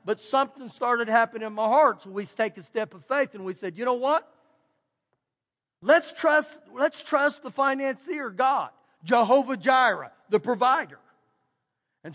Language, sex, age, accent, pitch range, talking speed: English, male, 50-69, American, 175-250 Hz, 160 wpm